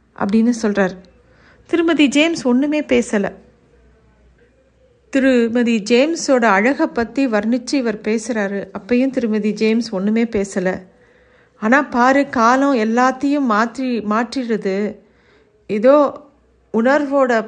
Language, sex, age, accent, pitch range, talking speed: Tamil, female, 50-69, native, 215-270 Hz, 90 wpm